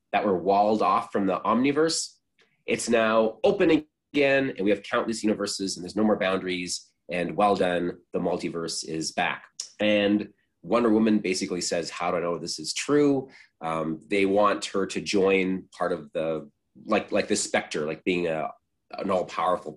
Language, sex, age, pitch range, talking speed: English, male, 30-49, 90-120 Hz, 175 wpm